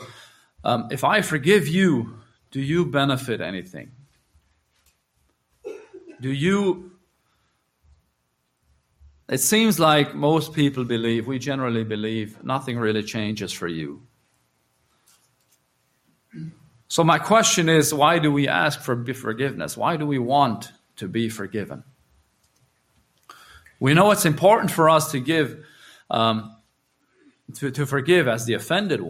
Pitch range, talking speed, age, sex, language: 110-170 Hz, 120 wpm, 40-59, male, English